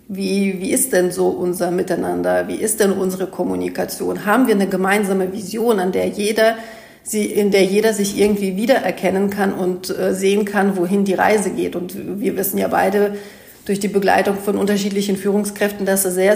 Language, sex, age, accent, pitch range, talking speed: German, female, 40-59, German, 190-210 Hz, 180 wpm